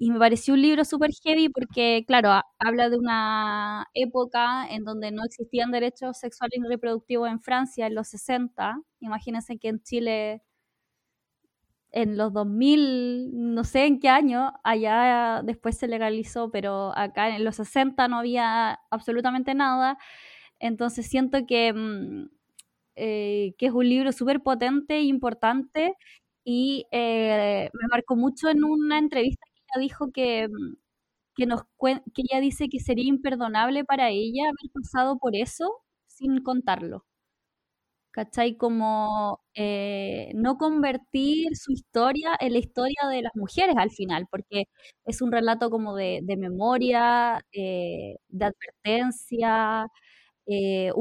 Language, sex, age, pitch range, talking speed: Spanish, female, 10-29, 220-265 Hz, 135 wpm